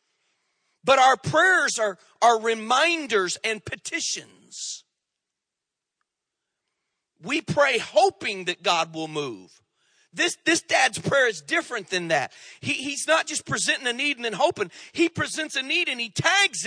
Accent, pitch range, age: American, 170-260 Hz, 40-59